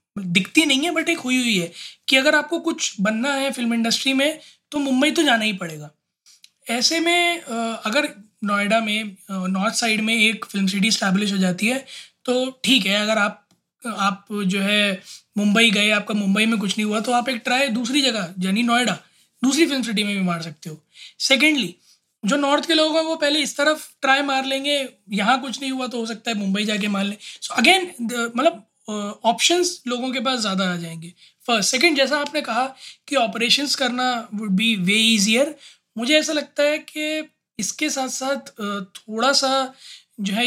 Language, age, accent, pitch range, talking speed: Hindi, 20-39, native, 200-270 Hz, 190 wpm